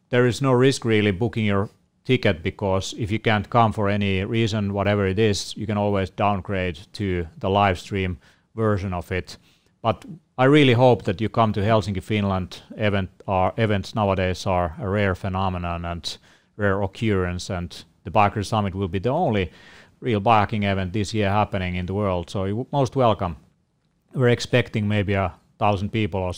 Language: English